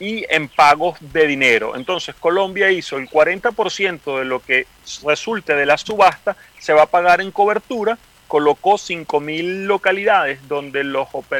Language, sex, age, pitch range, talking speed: Spanish, male, 40-59, 150-190 Hz, 145 wpm